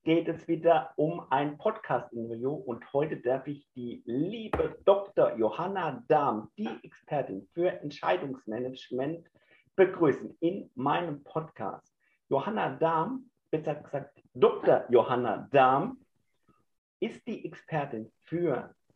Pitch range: 125-160 Hz